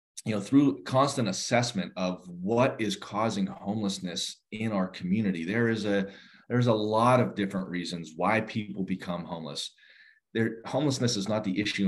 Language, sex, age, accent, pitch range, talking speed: English, male, 30-49, American, 95-115 Hz, 160 wpm